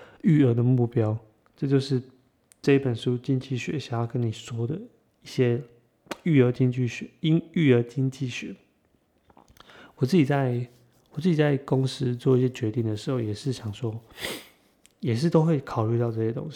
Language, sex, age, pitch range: Chinese, male, 30-49, 120-150 Hz